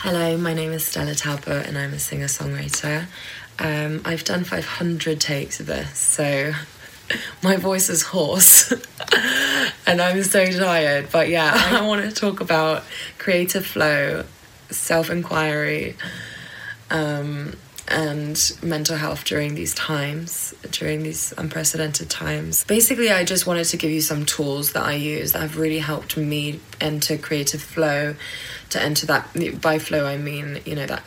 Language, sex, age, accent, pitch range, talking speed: English, female, 20-39, British, 145-160 Hz, 145 wpm